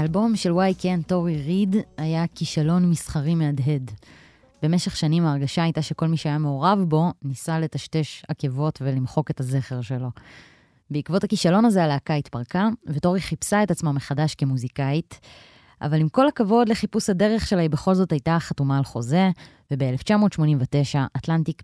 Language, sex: Hebrew, female